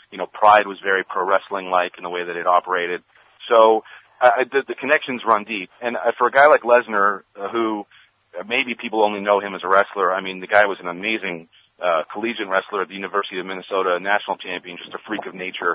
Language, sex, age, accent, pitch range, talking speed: English, male, 40-59, American, 95-105 Hz, 220 wpm